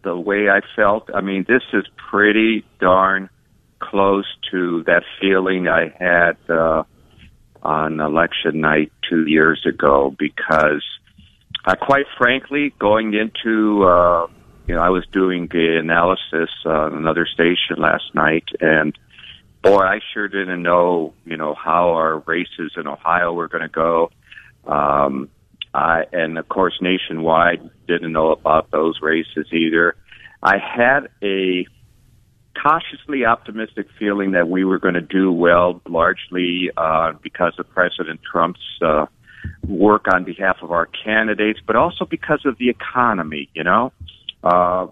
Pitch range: 85-110 Hz